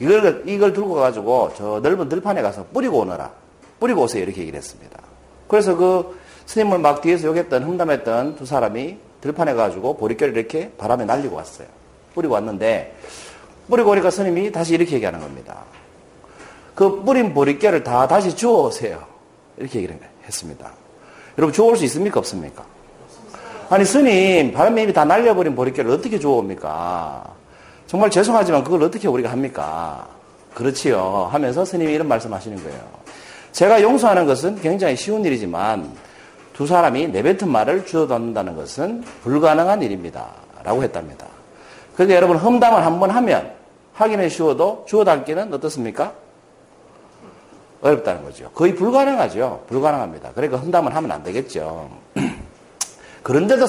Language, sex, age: Korean, male, 40-59